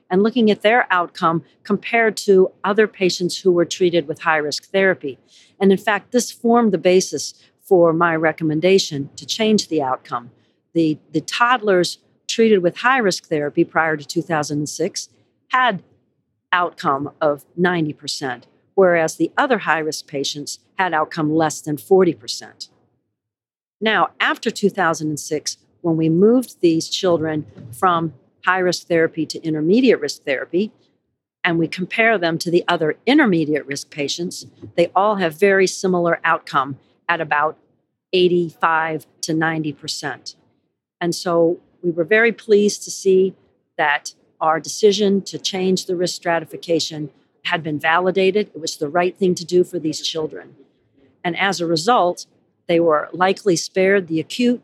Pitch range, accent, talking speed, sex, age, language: 155-190 Hz, American, 140 wpm, female, 50-69, English